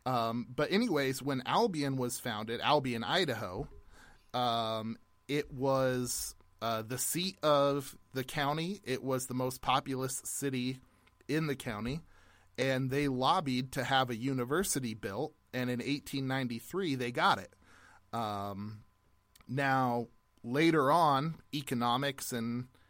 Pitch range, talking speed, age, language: 115-140 Hz, 125 wpm, 30-49, English